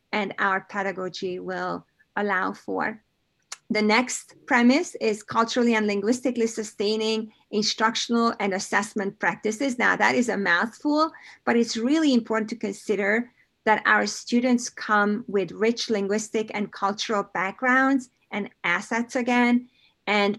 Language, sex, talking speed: English, female, 125 wpm